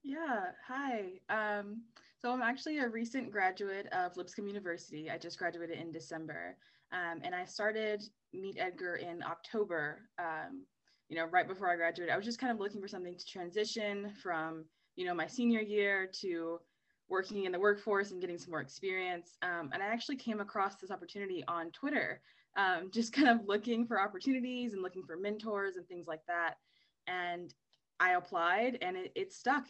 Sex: female